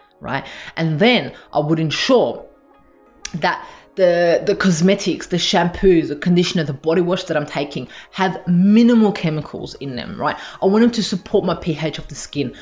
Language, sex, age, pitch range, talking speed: English, female, 20-39, 145-185 Hz, 170 wpm